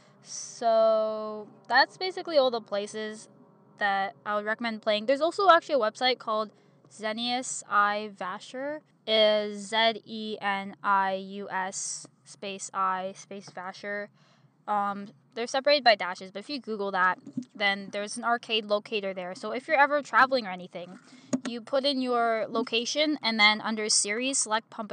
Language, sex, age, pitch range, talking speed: English, female, 10-29, 205-260 Hz, 140 wpm